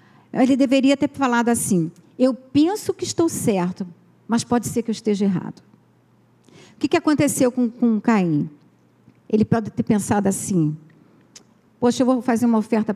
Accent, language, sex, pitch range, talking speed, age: Brazilian, Portuguese, female, 200-270 Hz, 160 wpm, 50-69